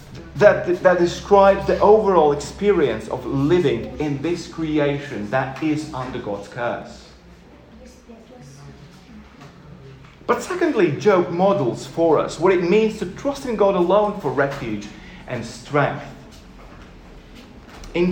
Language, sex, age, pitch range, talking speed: English, male, 30-49, 130-180 Hz, 115 wpm